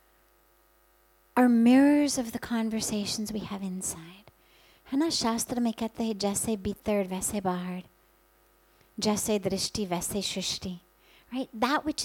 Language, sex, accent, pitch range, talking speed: English, female, American, 190-260 Hz, 55 wpm